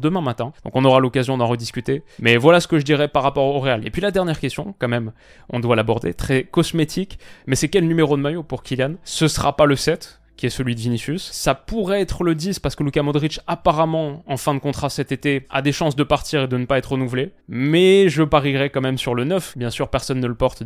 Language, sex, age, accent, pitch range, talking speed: French, male, 20-39, French, 125-155 Hz, 260 wpm